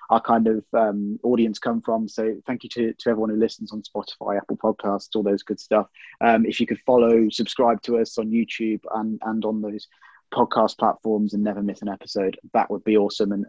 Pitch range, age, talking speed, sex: 105-130 Hz, 20-39, 220 wpm, male